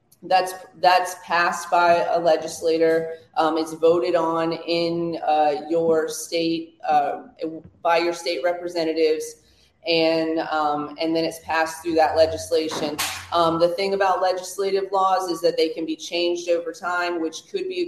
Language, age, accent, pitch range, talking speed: English, 20-39, American, 150-170 Hz, 155 wpm